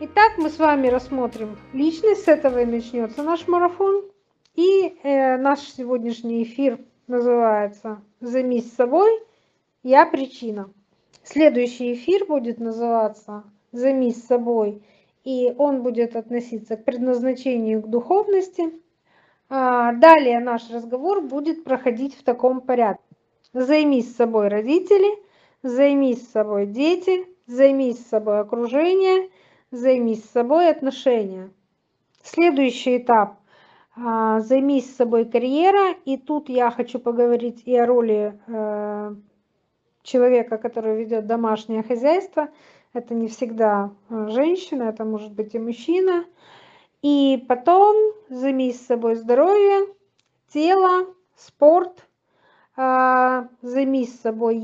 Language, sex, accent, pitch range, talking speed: Russian, female, native, 230-305 Hz, 105 wpm